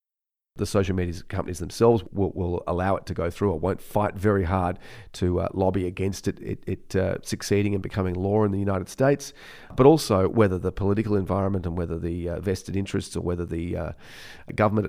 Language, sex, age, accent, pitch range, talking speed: English, male, 30-49, Australian, 90-115 Hz, 200 wpm